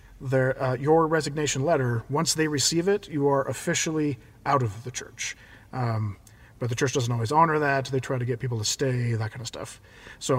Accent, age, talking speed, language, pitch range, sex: American, 40-59, 200 wpm, English, 115-150 Hz, male